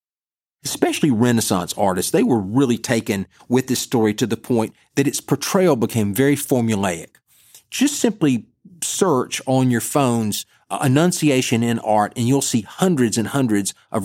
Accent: American